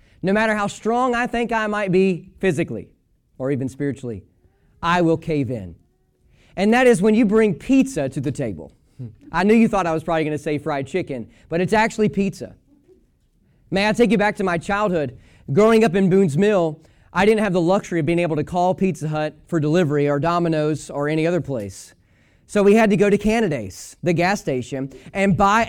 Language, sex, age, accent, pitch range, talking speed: English, male, 30-49, American, 155-210 Hz, 205 wpm